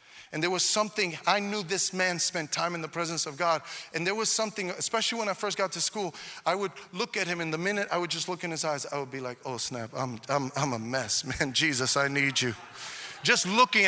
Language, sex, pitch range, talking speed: English, male, 140-190 Hz, 255 wpm